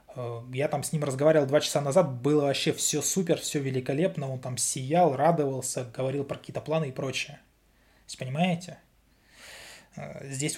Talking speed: 155 wpm